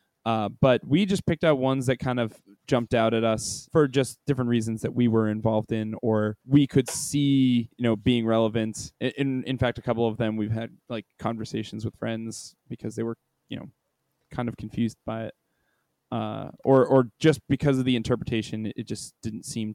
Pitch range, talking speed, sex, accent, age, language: 115-140 Hz, 200 wpm, male, American, 10-29, English